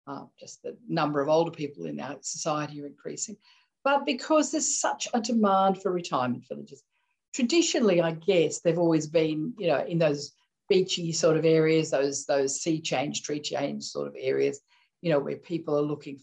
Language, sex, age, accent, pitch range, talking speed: English, female, 50-69, Australian, 160-225 Hz, 185 wpm